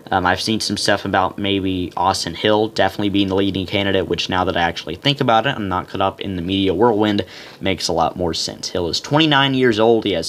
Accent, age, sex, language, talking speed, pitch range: American, 10-29, male, English, 245 wpm, 95-115 Hz